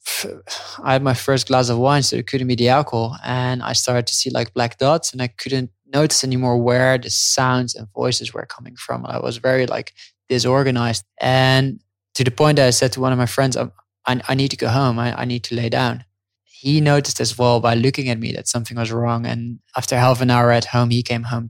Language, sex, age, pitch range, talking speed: English, male, 20-39, 115-130 Hz, 235 wpm